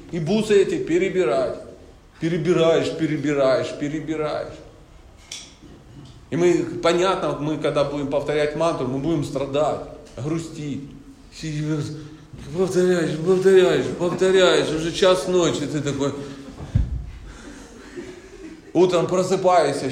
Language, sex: Russian, male